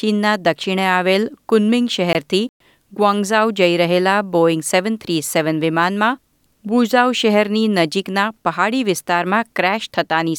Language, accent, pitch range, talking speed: Gujarati, native, 170-220 Hz, 115 wpm